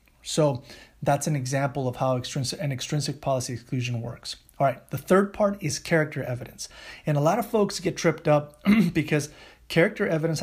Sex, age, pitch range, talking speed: male, 30-49, 135-165 Hz, 175 wpm